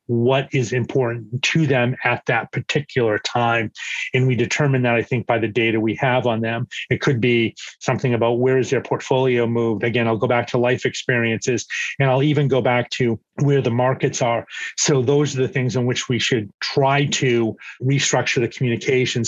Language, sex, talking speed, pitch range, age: English, male, 195 wpm, 120-140 Hz, 30-49